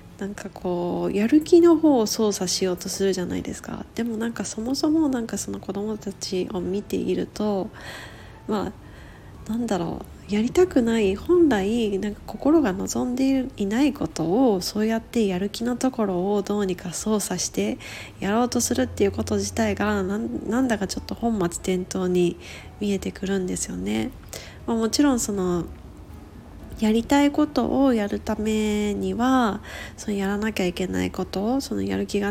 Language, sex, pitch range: Japanese, female, 180-235 Hz